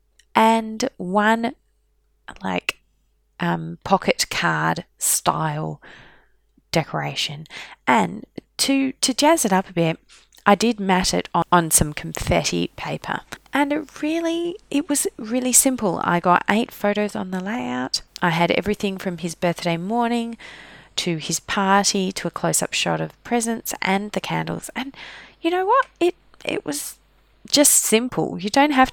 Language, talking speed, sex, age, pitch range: English, 145 wpm, female, 20-39, 175-260 Hz